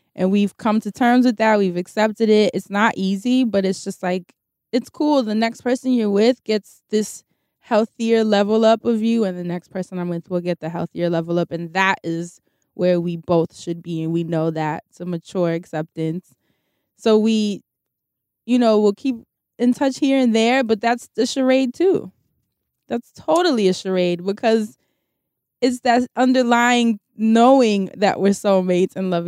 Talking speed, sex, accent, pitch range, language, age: 180 wpm, female, American, 185-235 Hz, English, 20-39